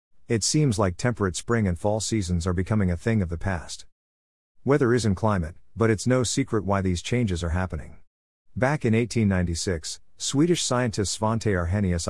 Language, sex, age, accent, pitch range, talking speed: English, male, 50-69, American, 90-115 Hz, 170 wpm